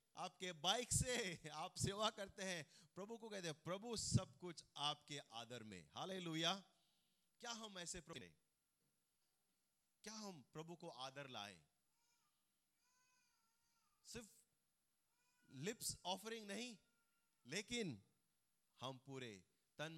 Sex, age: male, 30-49